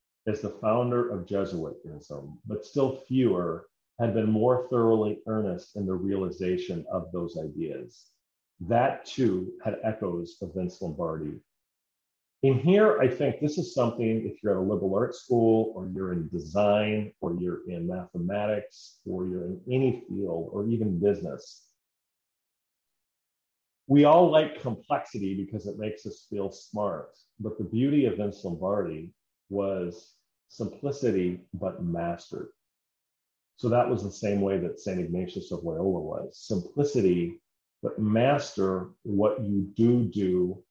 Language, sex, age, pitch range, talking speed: English, male, 40-59, 95-120 Hz, 140 wpm